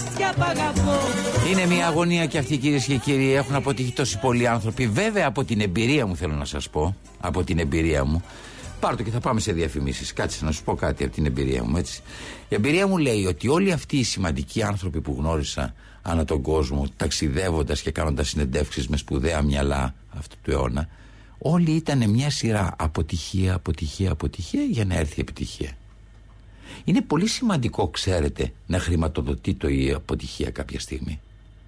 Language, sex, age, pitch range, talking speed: Greek, male, 60-79, 80-115 Hz, 170 wpm